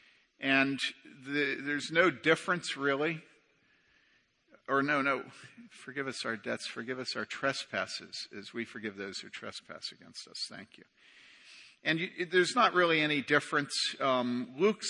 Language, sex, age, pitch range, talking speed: English, male, 50-69, 130-160 Hz, 135 wpm